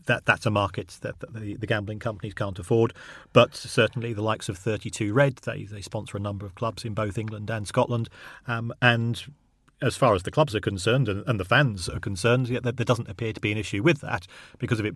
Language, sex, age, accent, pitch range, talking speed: English, male, 40-59, British, 105-125 Hz, 245 wpm